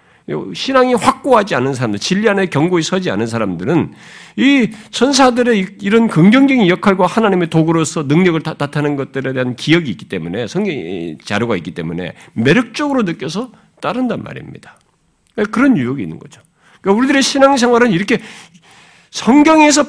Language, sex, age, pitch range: Korean, male, 50-69, 135-220 Hz